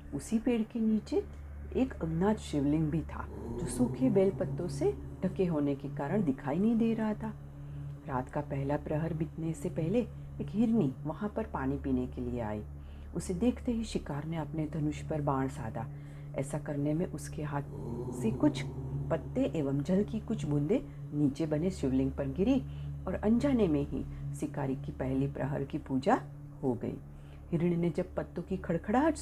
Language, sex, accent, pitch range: Gujarati, female, native, 125-185 Hz